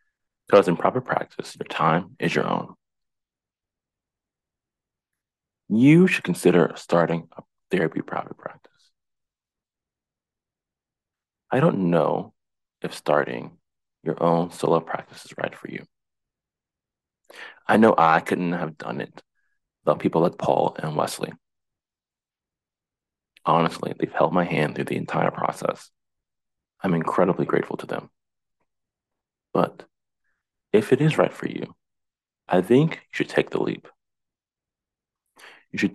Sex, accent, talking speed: male, American, 120 wpm